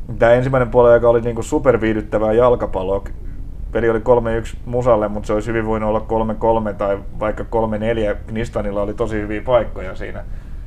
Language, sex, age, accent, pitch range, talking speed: Finnish, male, 30-49, native, 100-110 Hz, 150 wpm